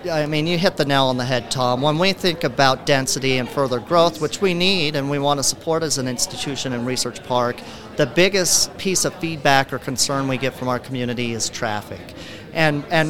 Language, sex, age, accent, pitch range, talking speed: English, male, 40-59, American, 125-150 Hz, 220 wpm